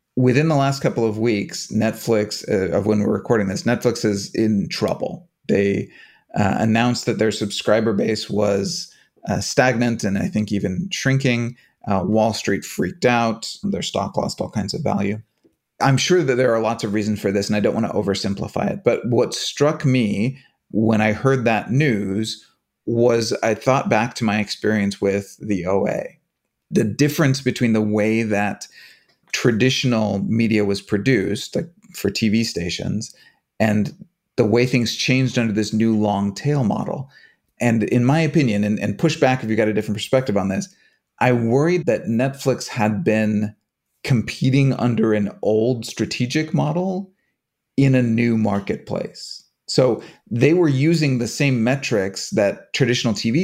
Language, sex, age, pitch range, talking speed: English, male, 30-49, 105-130 Hz, 165 wpm